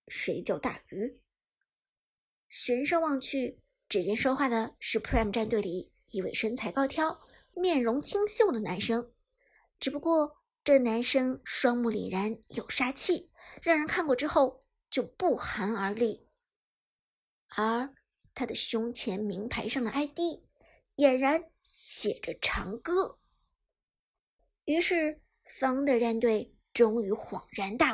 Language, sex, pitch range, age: Chinese, male, 225-300 Hz, 50-69